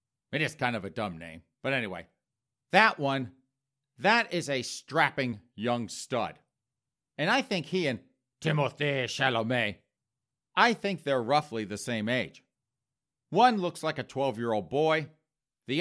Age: 40-59